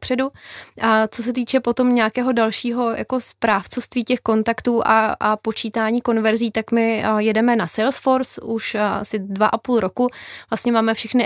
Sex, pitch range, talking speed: female, 215-230 Hz, 160 wpm